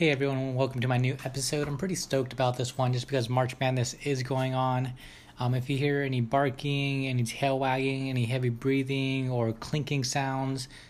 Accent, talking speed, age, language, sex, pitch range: American, 195 wpm, 20-39, English, male, 120-135 Hz